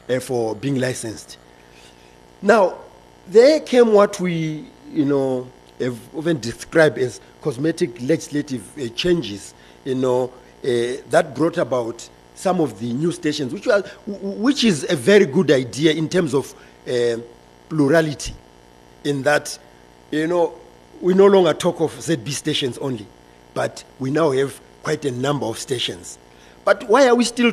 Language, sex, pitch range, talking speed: English, male, 110-155 Hz, 150 wpm